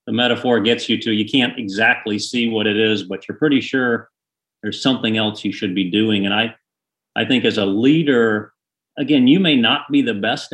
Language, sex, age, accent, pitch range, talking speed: English, male, 40-59, American, 100-115 Hz, 210 wpm